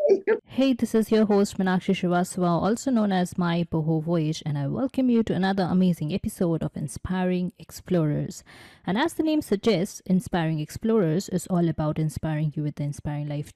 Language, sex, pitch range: English, female, 160-220 Hz